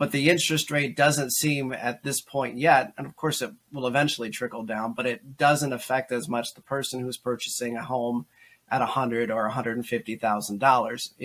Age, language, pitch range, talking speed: 30-49, English, 120-140 Hz, 185 wpm